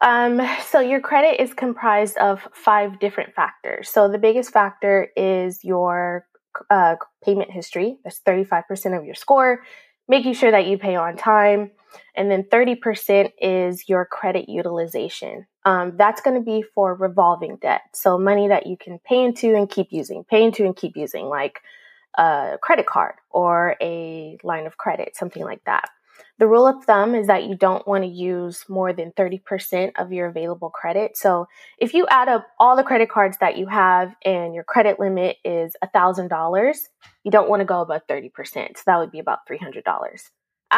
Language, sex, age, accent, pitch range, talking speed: English, female, 20-39, American, 185-225 Hz, 180 wpm